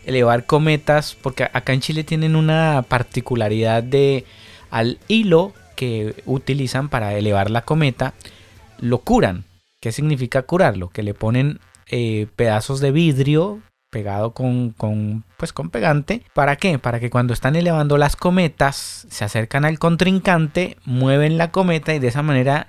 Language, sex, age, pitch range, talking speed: Spanish, male, 30-49, 110-145 Hz, 145 wpm